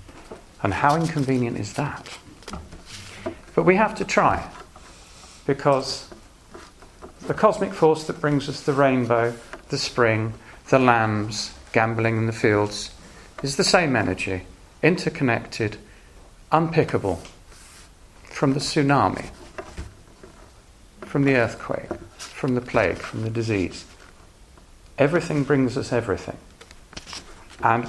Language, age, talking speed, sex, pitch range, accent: English, 40-59, 110 wpm, male, 105-135 Hz, British